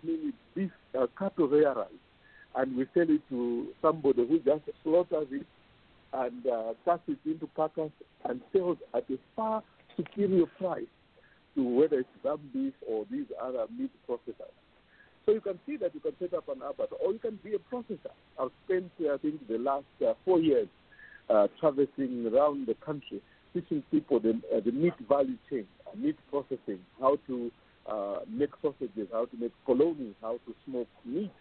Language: English